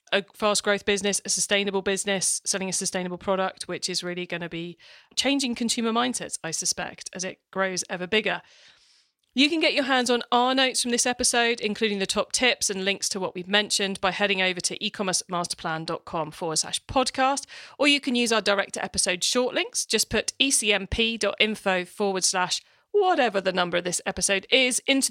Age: 40-59